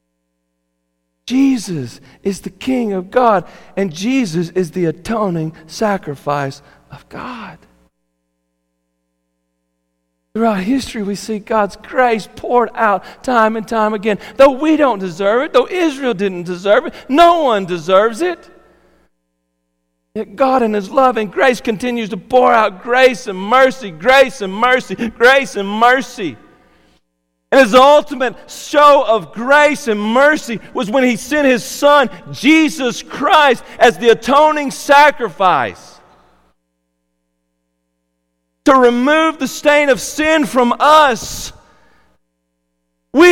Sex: male